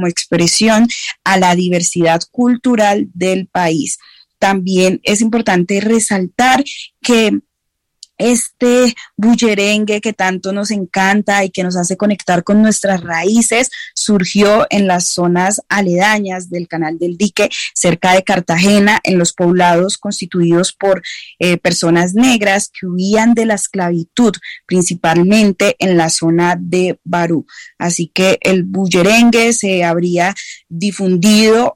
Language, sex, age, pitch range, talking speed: Spanish, female, 20-39, 175-215 Hz, 125 wpm